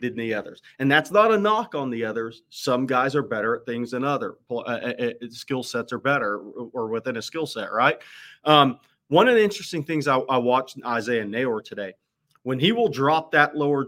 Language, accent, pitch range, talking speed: English, American, 115-150 Hz, 210 wpm